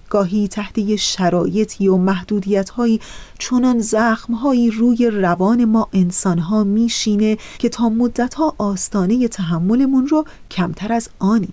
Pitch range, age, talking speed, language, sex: 185-240 Hz, 30-49, 130 wpm, Persian, female